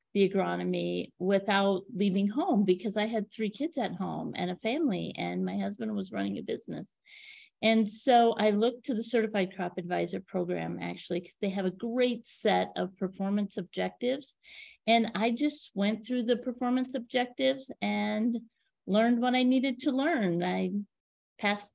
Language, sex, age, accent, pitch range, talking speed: English, female, 40-59, American, 195-240 Hz, 165 wpm